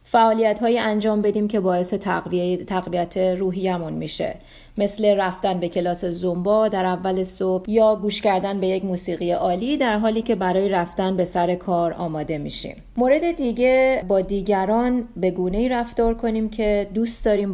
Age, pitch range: 30-49, 180-220 Hz